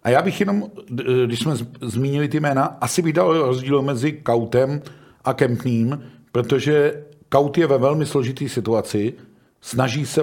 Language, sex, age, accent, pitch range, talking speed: Czech, male, 50-69, native, 115-140 Hz, 145 wpm